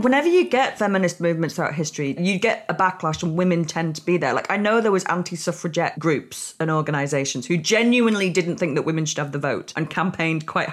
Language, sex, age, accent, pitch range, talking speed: English, female, 30-49, British, 170-220 Hz, 220 wpm